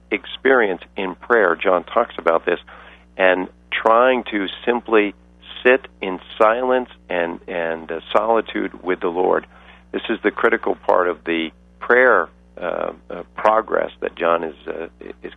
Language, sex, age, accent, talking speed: English, male, 50-69, American, 145 wpm